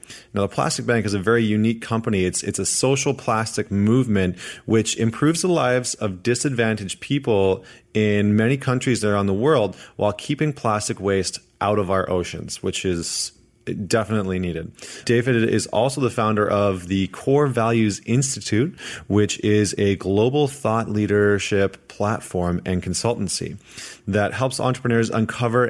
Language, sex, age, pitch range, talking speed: English, male, 30-49, 95-115 Hz, 145 wpm